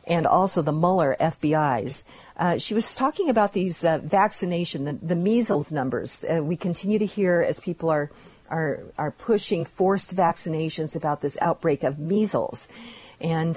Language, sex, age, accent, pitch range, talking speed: English, female, 50-69, American, 160-205 Hz, 160 wpm